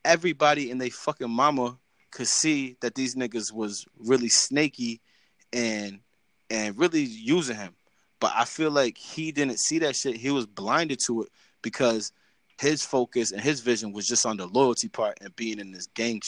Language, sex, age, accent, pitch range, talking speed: English, male, 20-39, American, 115-150 Hz, 180 wpm